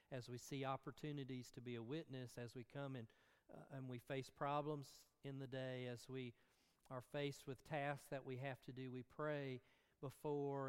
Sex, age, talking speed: male, 40-59, 190 wpm